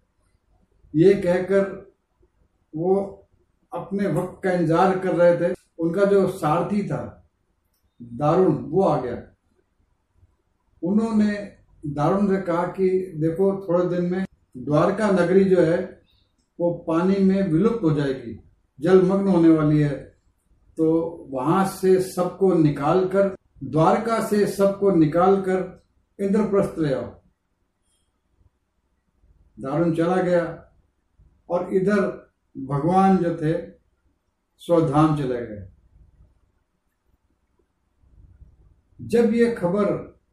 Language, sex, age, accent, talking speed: Hindi, male, 50-69, native, 100 wpm